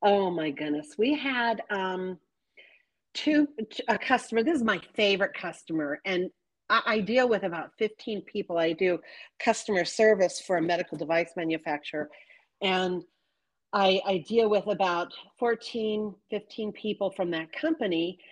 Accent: American